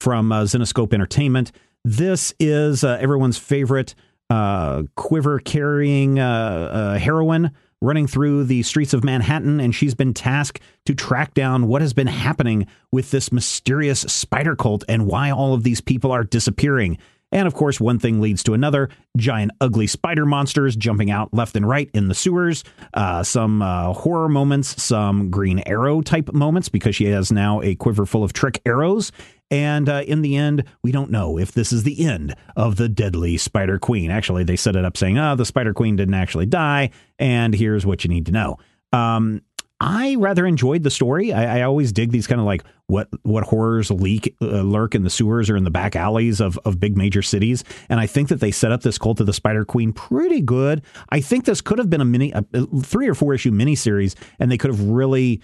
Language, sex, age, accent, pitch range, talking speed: English, male, 40-59, American, 105-140 Hz, 205 wpm